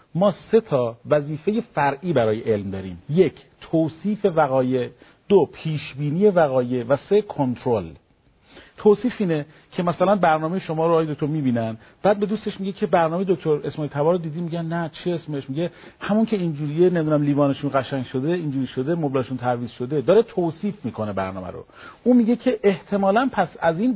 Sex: male